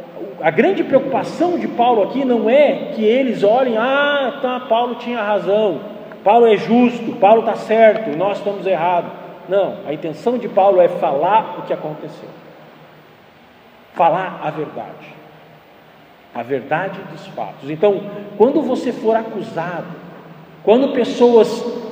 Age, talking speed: 40-59, 135 wpm